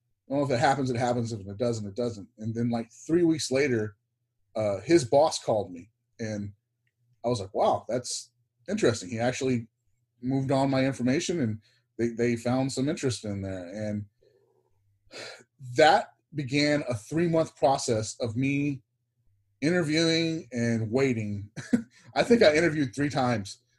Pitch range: 115-135 Hz